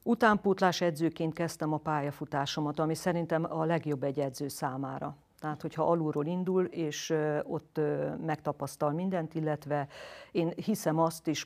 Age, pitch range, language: 50-69, 150-175 Hz, Hungarian